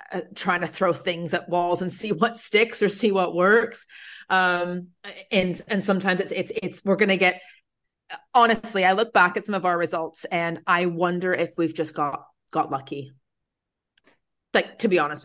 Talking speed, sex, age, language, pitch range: 180 wpm, female, 30-49, English, 150-185 Hz